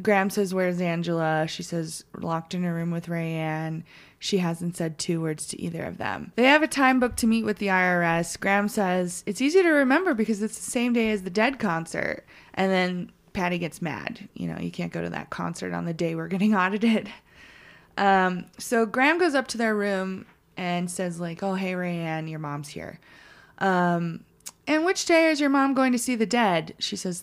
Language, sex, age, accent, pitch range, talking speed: English, female, 20-39, American, 170-225 Hz, 210 wpm